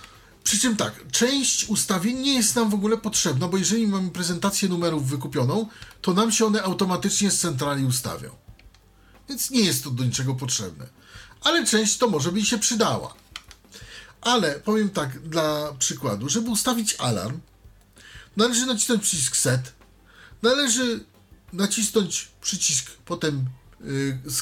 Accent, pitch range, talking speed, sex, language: native, 120-200 Hz, 140 wpm, male, Polish